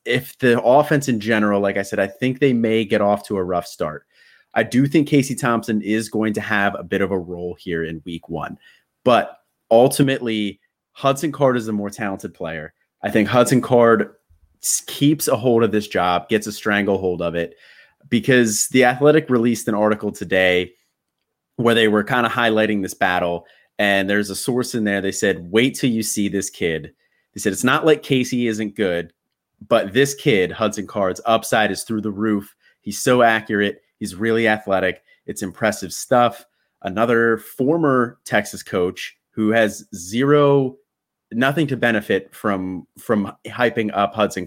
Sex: male